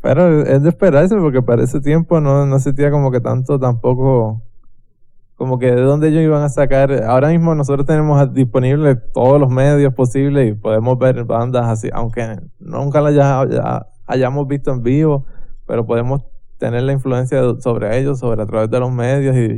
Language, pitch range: English, 120-140 Hz